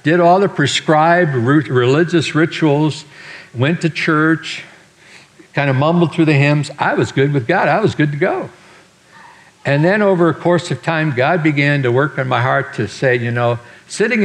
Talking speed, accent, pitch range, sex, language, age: 185 wpm, American, 115-170 Hz, male, English, 60-79